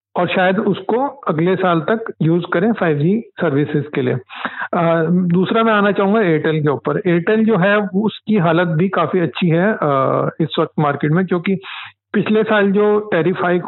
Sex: male